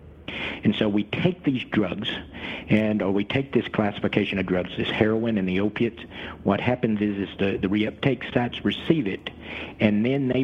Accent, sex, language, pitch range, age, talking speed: American, male, English, 100-115 Hz, 50-69, 185 wpm